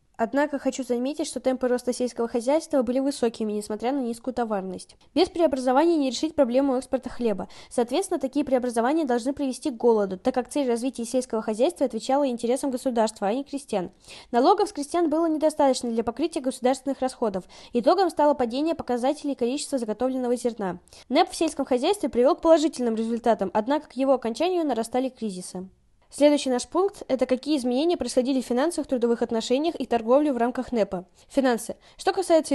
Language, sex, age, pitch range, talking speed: Russian, female, 10-29, 240-290 Hz, 165 wpm